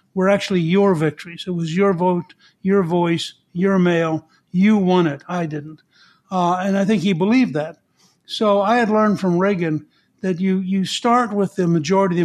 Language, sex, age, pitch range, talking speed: English, male, 60-79, 165-195 Hz, 190 wpm